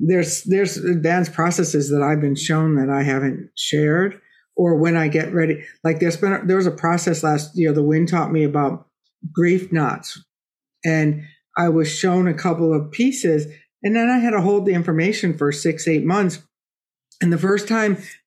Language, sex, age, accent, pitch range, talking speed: English, female, 60-79, American, 160-205 Hz, 185 wpm